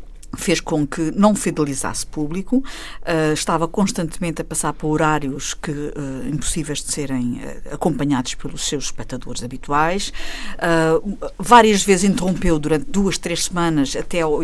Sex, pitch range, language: female, 150-200 Hz, Portuguese